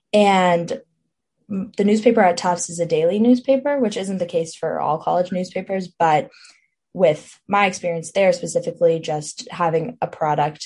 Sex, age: female, 10-29